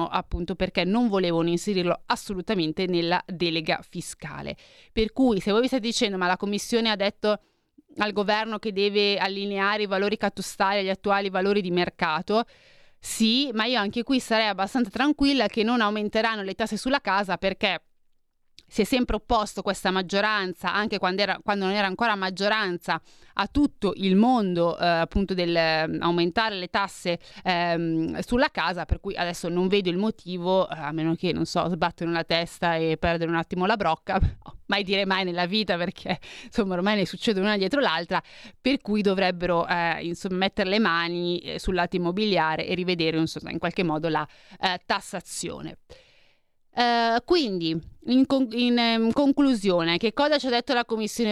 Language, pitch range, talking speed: Italian, 175-225 Hz, 165 wpm